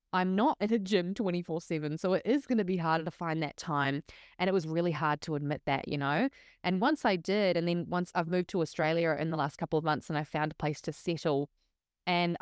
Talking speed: 250 wpm